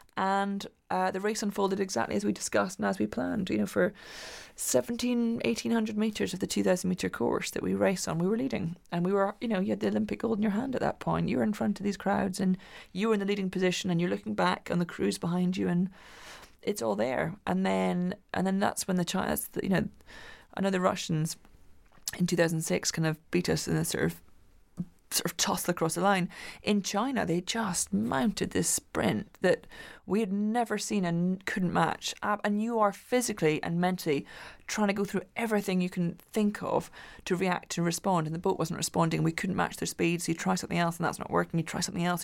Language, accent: English, British